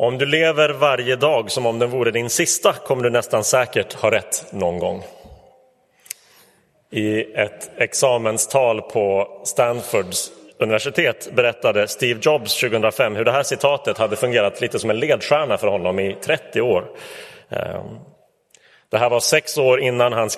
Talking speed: 150 wpm